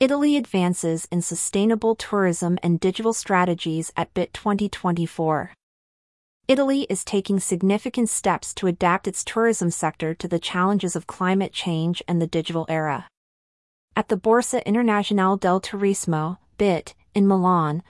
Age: 30-49